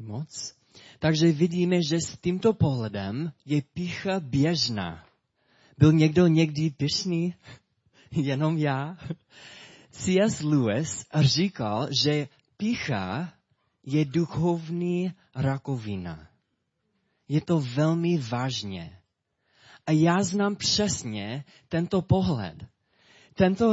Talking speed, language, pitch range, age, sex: 90 wpm, Czech, 125-170 Hz, 20-39, male